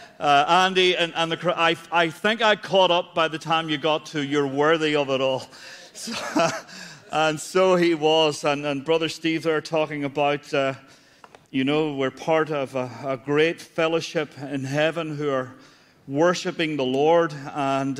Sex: male